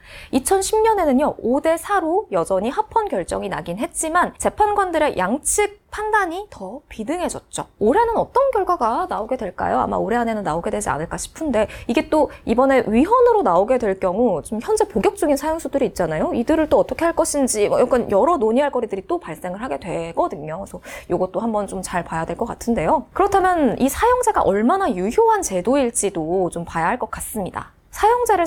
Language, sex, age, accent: Korean, female, 20-39, native